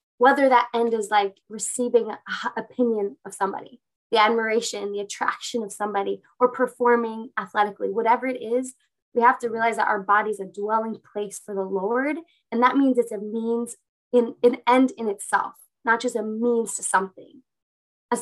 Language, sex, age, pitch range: English, female, 20-39, 200-235 Hz